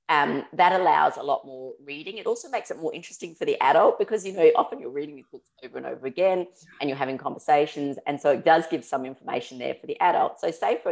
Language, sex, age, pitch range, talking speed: English, female, 30-49, 130-165 Hz, 255 wpm